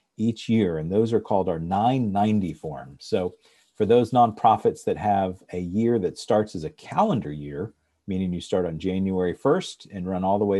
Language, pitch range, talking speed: English, 90-115 Hz, 190 wpm